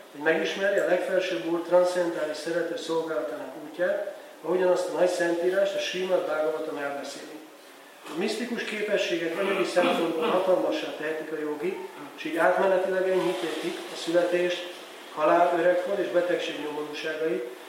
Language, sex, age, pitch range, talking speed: Hungarian, male, 40-59, 160-185 Hz, 125 wpm